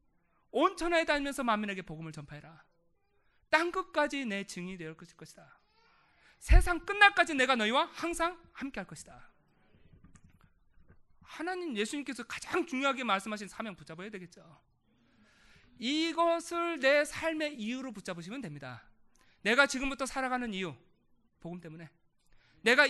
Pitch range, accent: 180-295 Hz, native